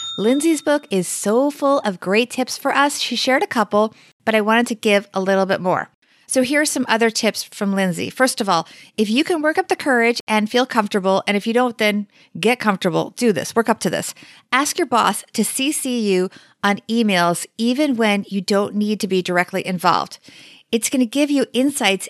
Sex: female